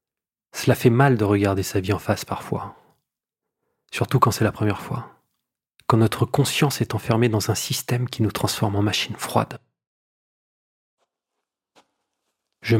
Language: French